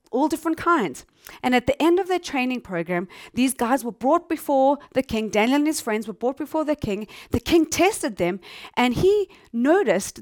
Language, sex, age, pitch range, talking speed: English, female, 30-49, 210-280 Hz, 200 wpm